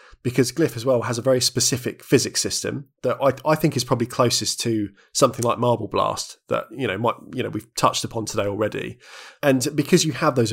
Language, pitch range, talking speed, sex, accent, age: English, 115-135 Hz, 215 wpm, male, British, 20-39